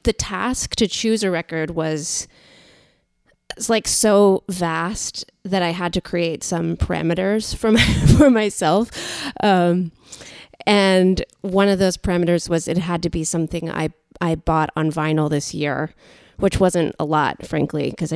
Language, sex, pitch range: English, female, 160-210 Hz